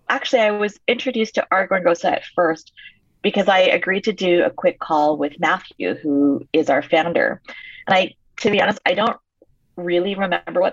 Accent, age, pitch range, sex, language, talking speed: American, 30-49, 165-210 Hz, female, English, 180 wpm